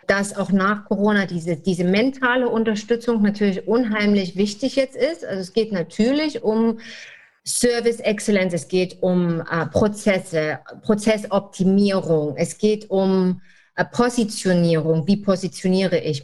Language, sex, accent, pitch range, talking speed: German, female, German, 175-210 Hz, 120 wpm